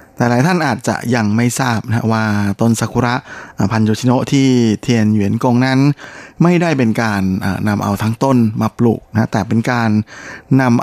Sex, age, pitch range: male, 20-39, 105-125 Hz